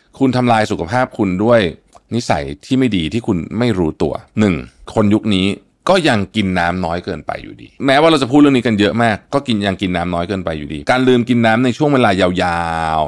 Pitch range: 90-120 Hz